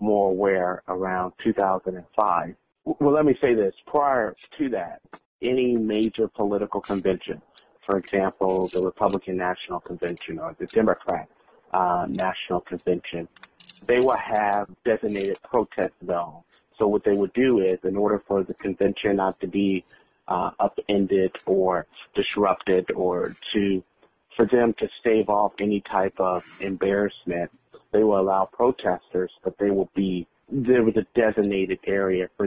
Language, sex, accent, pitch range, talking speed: English, male, American, 95-105 Hz, 140 wpm